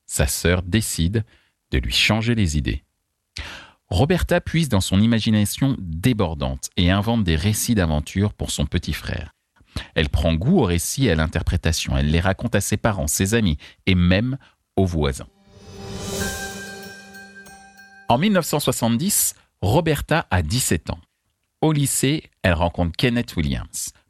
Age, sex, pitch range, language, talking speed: 40-59, male, 80-110 Hz, French, 135 wpm